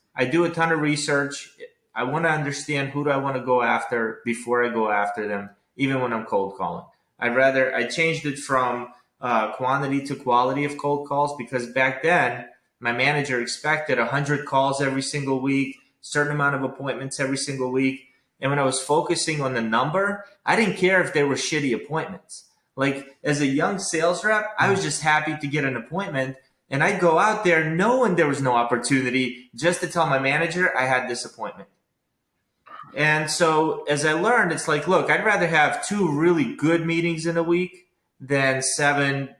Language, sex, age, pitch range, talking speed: English, male, 20-39, 125-155 Hz, 195 wpm